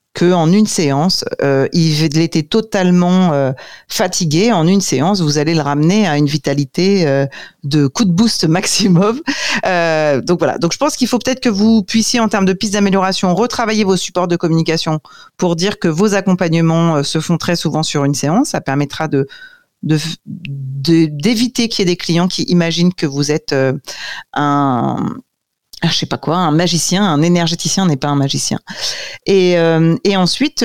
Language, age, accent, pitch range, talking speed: French, 40-59, French, 155-200 Hz, 185 wpm